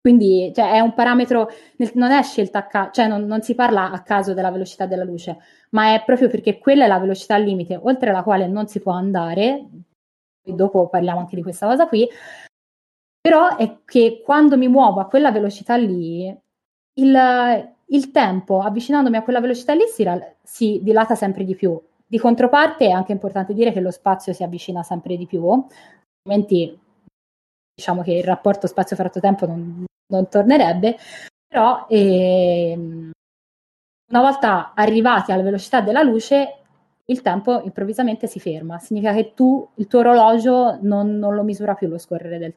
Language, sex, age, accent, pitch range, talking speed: Italian, female, 20-39, native, 185-240 Hz, 175 wpm